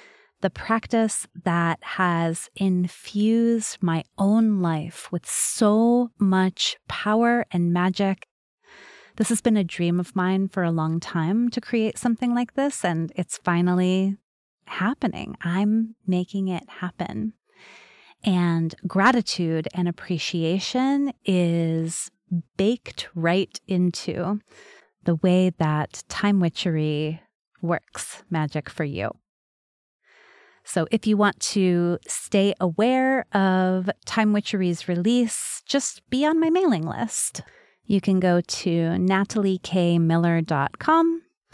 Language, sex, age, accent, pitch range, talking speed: English, female, 30-49, American, 170-220 Hz, 110 wpm